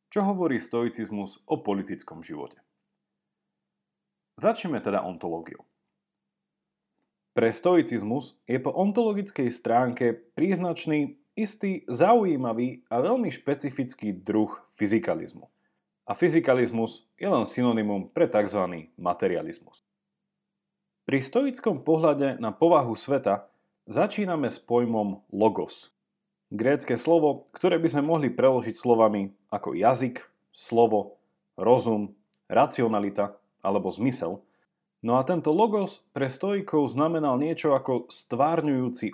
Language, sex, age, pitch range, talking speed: Slovak, male, 40-59, 110-170 Hz, 100 wpm